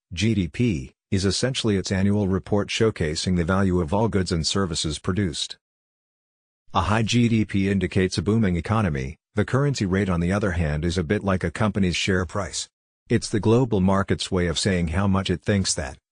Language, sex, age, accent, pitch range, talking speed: English, male, 50-69, American, 90-105 Hz, 180 wpm